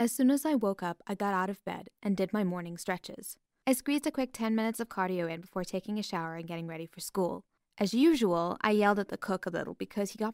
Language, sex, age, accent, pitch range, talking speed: English, female, 10-29, American, 185-230 Hz, 265 wpm